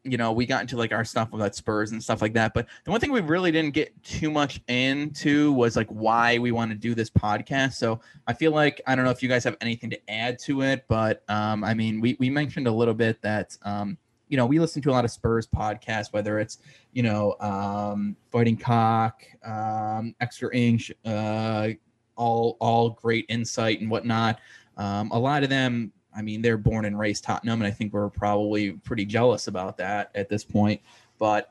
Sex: male